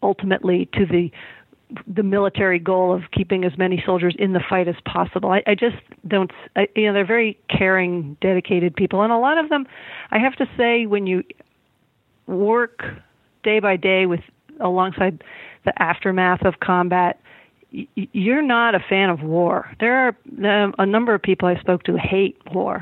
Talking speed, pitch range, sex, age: 180 wpm, 185-225 Hz, female, 50-69